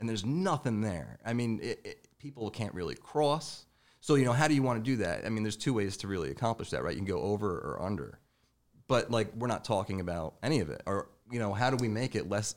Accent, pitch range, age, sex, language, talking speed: American, 100-120 Hz, 30-49, male, English, 270 wpm